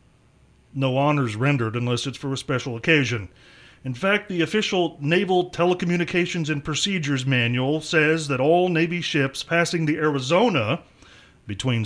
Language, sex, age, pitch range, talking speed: English, male, 40-59, 125-160 Hz, 135 wpm